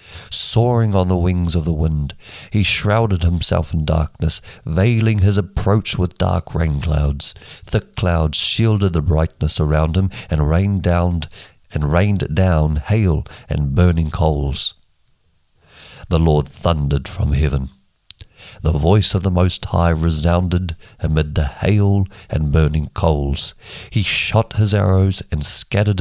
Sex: male